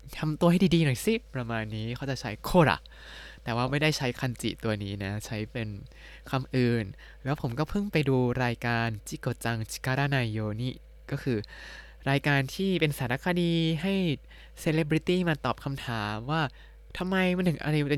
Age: 20-39